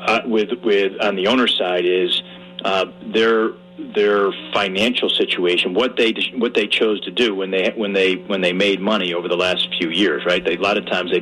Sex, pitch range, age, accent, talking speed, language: male, 100-125 Hz, 40-59, American, 215 wpm, English